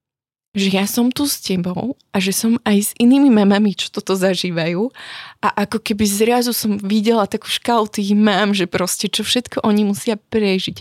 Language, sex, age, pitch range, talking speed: Slovak, female, 20-39, 200-235 Hz, 185 wpm